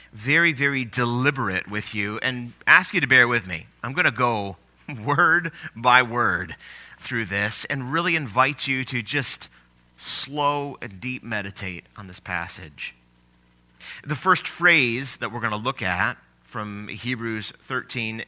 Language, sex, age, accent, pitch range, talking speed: English, male, 30-49, American, 90-135 Hz, 150 wpm